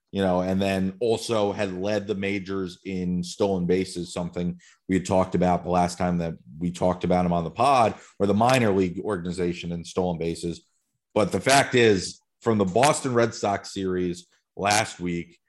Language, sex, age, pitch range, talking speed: English, male, 30-49, 90-110 Hz, 185 wpm